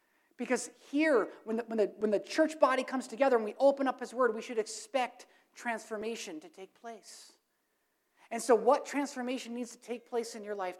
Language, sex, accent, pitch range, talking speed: English, male, American, 195-275 Hz, 185 wpm